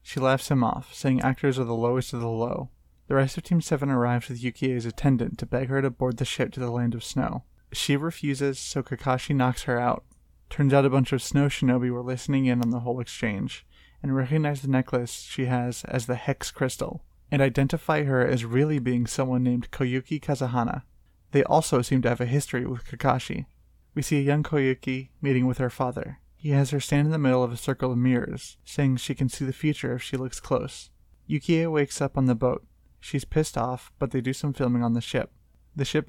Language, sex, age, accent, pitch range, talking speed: English, male, 20-39, American, 125-140 Hz, 220 wpm